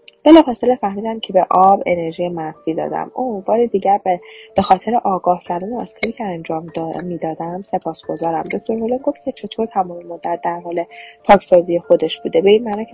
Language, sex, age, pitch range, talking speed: Persian, female, 10-29, 175-240 Hz, 175 wpm